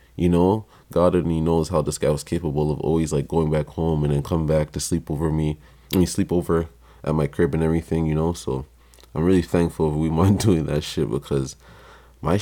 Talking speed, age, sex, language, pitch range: 225 wpm, 20-39, male, English, 75-85 Hz